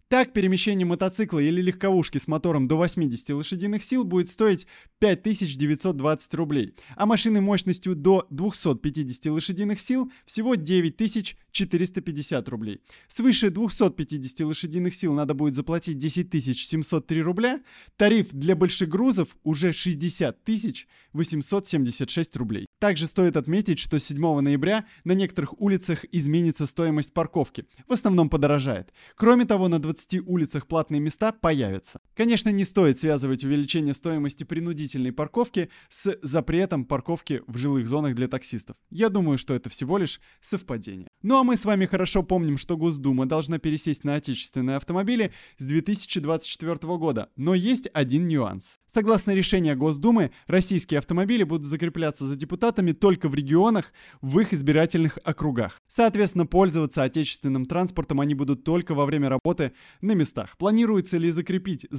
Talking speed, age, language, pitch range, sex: 135 wpm, 20-39, Russian, 145-190 Hz, male